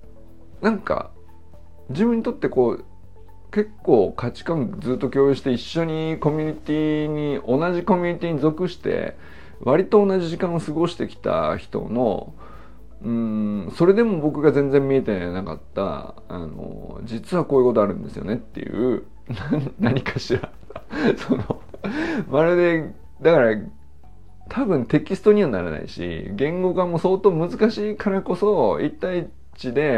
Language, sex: Japanese, male